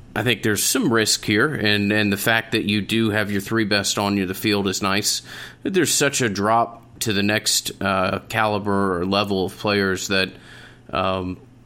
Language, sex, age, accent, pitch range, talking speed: English, male, 30-49, American, 95-110 Hz, 195 wpm